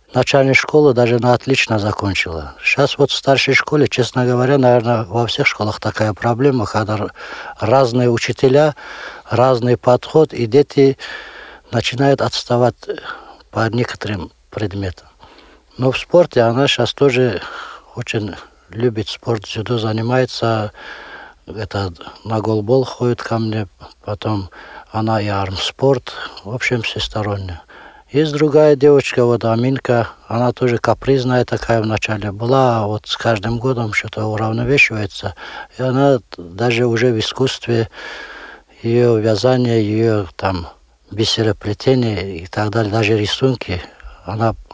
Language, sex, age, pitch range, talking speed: Russian, male, 60-79, 110-125 Hz, 120 wpm